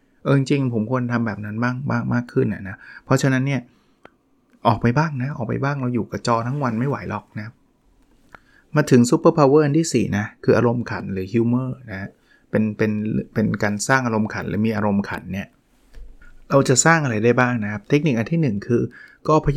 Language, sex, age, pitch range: Thai, male, 20-39, 110-130 Hz